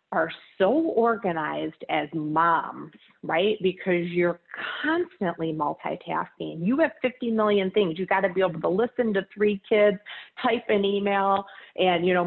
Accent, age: American, 30-49